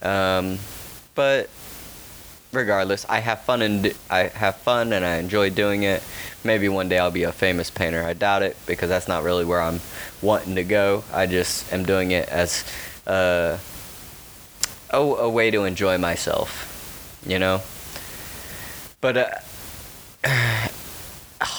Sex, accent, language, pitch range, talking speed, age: male, American, English, 90-100 Hz, 145 wpm, 20-39